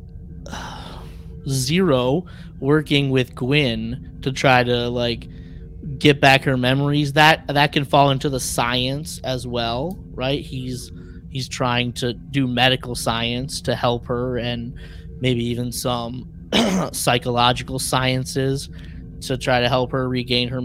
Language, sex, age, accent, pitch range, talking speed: English, male, 20-39, American, 120-140 Hz, 130 wpm